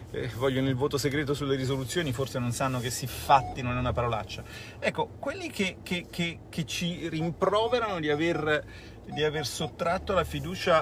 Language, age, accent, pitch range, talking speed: Italian, 40-59, native, 115-150 Hz, 170 wpm